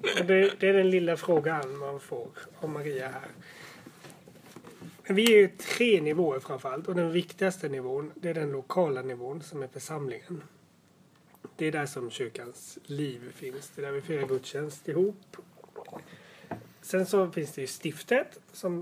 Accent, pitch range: native, 145-185 Hz